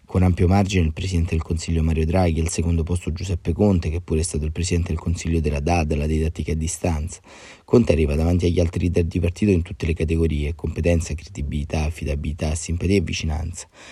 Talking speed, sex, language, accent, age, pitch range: 200 wpm, male, Italian, native, 30-49, 80-90 Hz